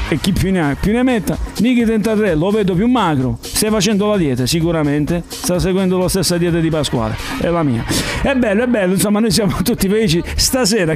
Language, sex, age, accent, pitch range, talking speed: Italian, male, 50-69, native, 150-205 Hz, 215 wpm